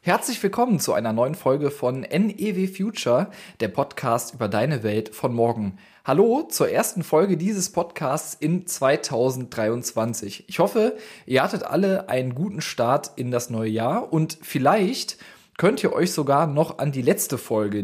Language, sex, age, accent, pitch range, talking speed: German, male, 20-39, German, 125-180 Hz, 160 wpm